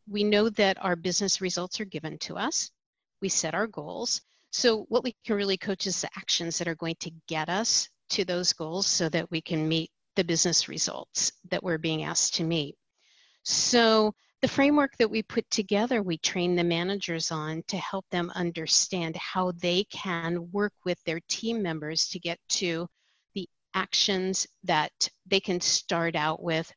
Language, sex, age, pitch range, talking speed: English, female, 50-69, 175-225 Hz, 180 wpm